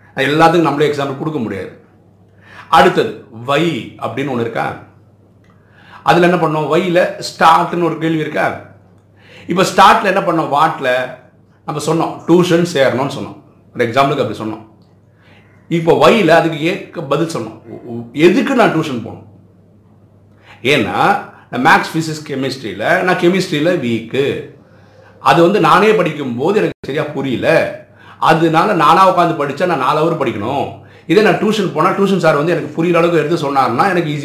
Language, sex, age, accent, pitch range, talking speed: Tamil, male, 50-69, native, 110-170 Hz, 135 wpm